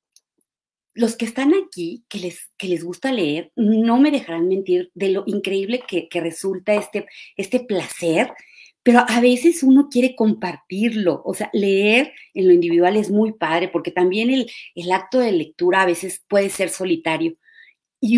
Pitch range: 185-250 Hz